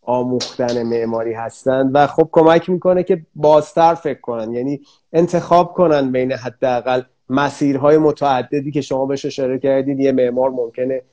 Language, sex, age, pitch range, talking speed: Persian, male, 30-49, 125-150 Hz, 140 wpm